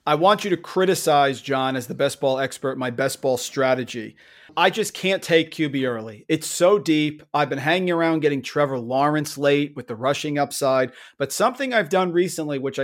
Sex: male